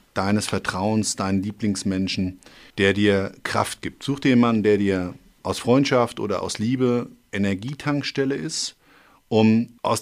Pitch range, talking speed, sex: 95-115 Hz, 130 wpm, male